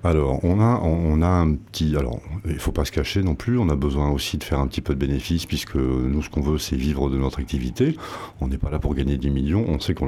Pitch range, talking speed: 65-85 Hz, 285 wpm